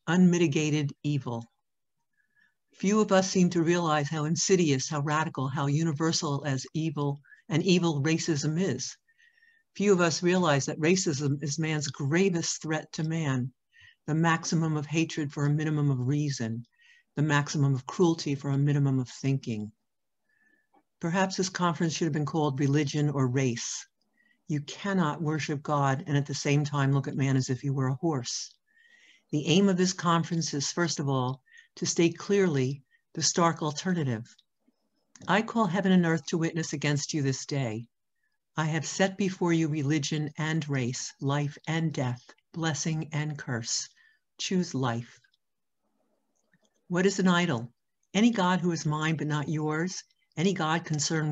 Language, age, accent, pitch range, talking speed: English, 60-79, American, 145-180 Hz, 160 wpm